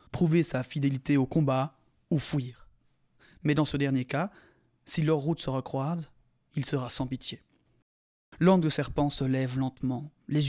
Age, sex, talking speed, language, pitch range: 20-39, male, 155 wpm, French, 130-155 Hz